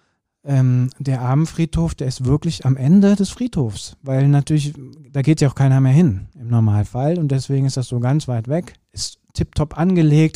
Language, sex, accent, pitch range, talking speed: German, male, German, 125-145 Hz, 185 wpm